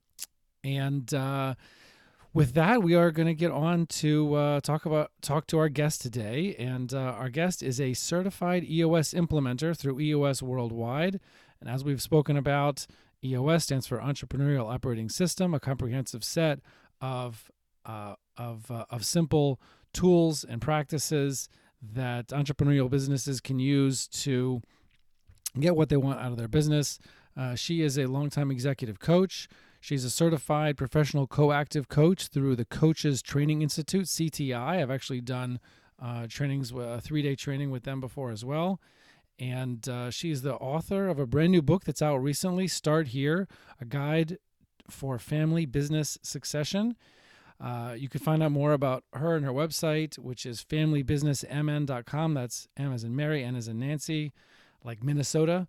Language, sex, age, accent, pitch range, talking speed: English, male, 40-59, American, 125-155 Hz, 155 wpm